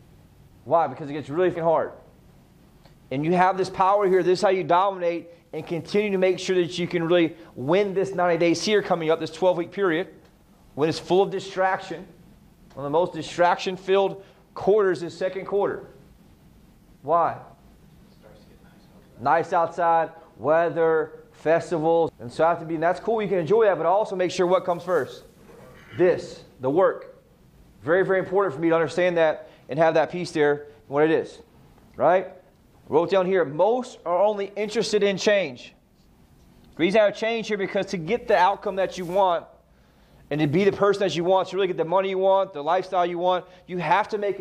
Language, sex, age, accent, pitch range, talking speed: English, male, 30-49, American, 165-195 Hz, 195 wpm